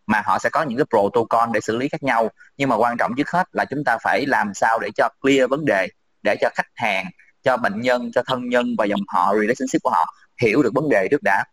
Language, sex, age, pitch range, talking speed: Vietnamese, male, 20-39, 100-135 Hz, 265 wpm